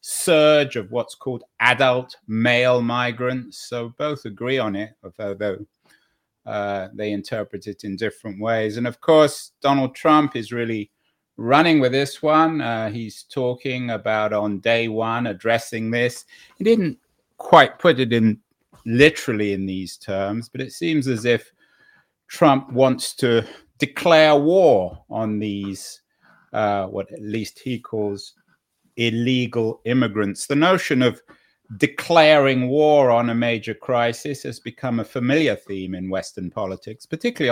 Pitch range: 110-145 Hz